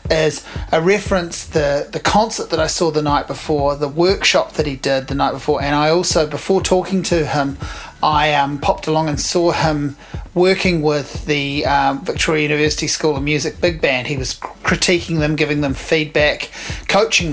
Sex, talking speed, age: male, 185 wpm, 30-49